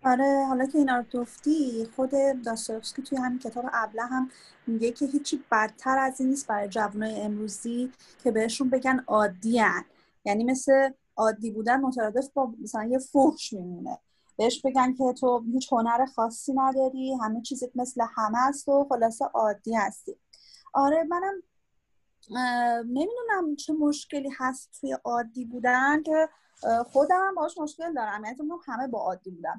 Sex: female